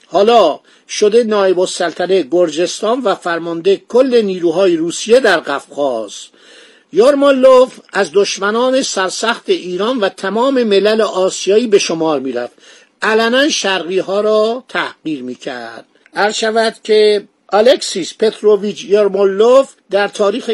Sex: male